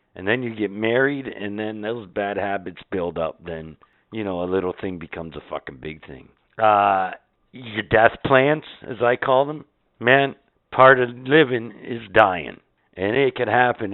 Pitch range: 95-120 Hz